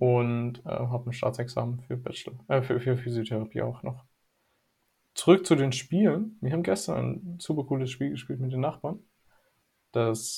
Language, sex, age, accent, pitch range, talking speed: German, male, 20-39, German, 120-145 Hz, 170 wpm